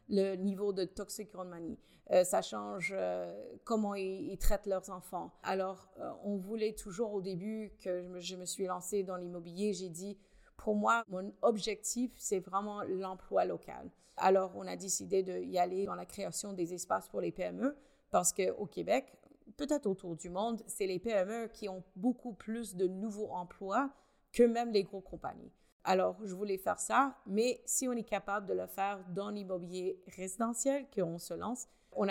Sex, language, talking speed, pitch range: female, English, 185 wpm, 185-220 Hz